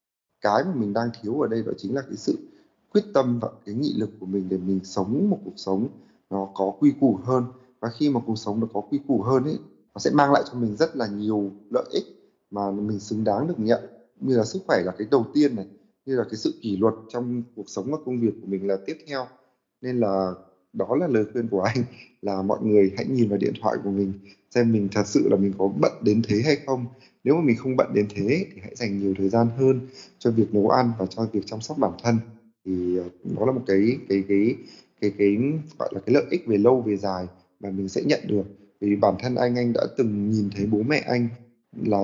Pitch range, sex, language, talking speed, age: 100-125 Hz, male, Vietnamese, 250 wpm, 20-39